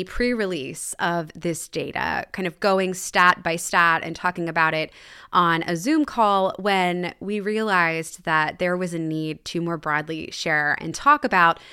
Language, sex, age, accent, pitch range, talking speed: English, female, 20-39, American, 170-215 Hz, 170 wpm